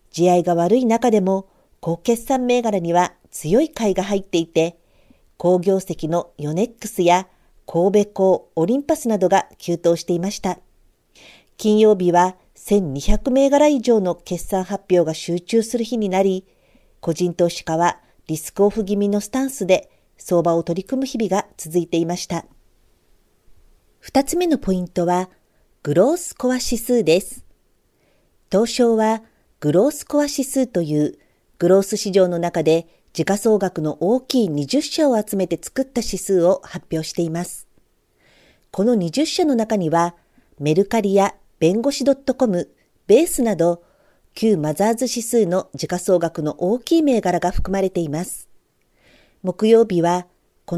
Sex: female